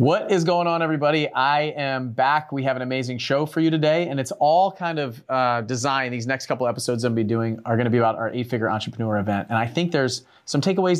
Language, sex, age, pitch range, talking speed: English, male, 30-49, 110-135 Hz, 260 wpm